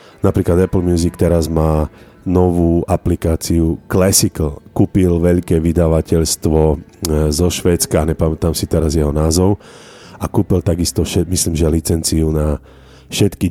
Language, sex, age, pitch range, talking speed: Slovak, male, 40-59, 80-95 Hz, 120 wpm